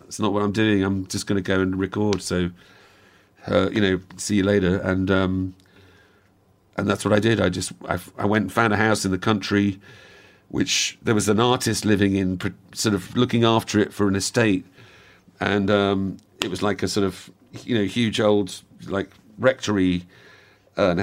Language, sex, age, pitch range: English, male, 50-69, 100-120 Hz